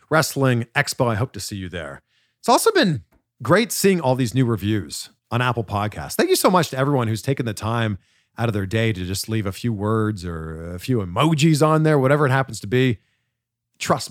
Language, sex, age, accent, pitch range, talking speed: English, male, 40-59, American, 110-170 Hz, 220 wpm